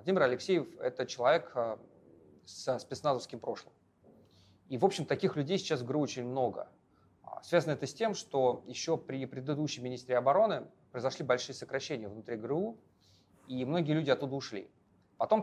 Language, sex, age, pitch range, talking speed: Russian, male, 30-49, 120-160 Hz, 150 wpm